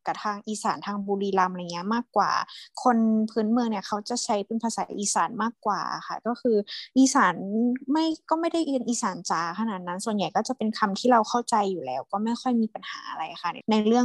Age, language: 20-39, Thai